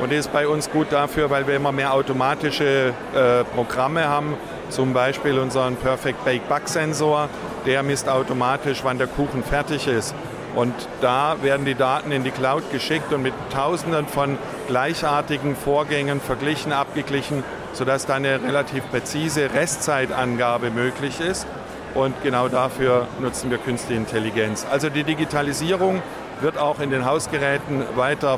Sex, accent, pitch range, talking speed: male, German, 130-150 Hz, 140 wpm